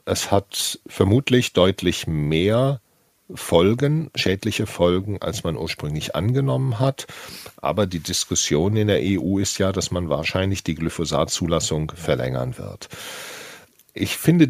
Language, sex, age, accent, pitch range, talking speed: German, male, 50-69, German, 90-120 Hz, 125 wpm